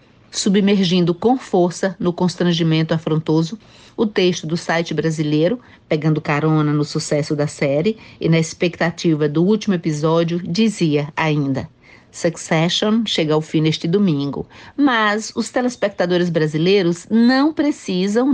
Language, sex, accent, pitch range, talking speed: Portuguese, female, Brazilian, 165-215 Hz, 120 wpm